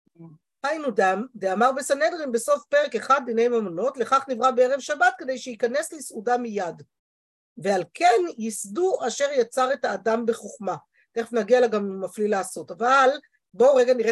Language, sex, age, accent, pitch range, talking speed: Hebrew, female, 50-69, native, 205-270 Hz, 150 wpm